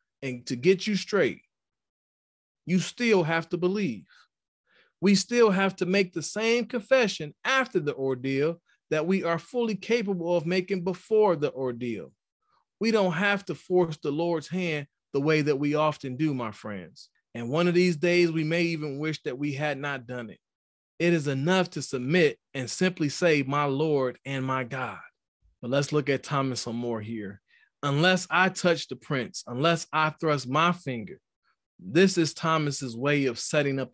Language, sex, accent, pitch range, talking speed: English, male, American, 140-190 Hz, 175 wpm